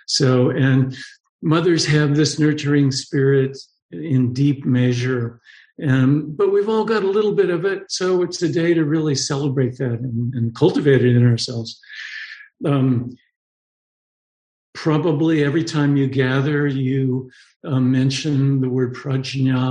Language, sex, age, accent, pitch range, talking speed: English, male, 50-69, American, 130-155 Hz, 135 wpm